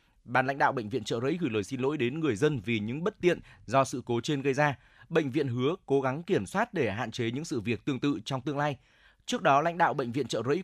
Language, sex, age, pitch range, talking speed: Vietnamese, male, 20-39, 120-155 Hz, 280 wpm